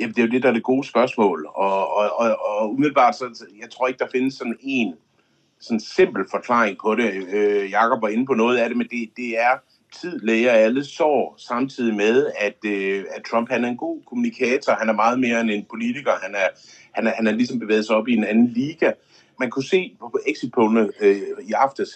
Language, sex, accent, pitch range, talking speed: Danish, male, native, 110-185 Hz, 230 wpm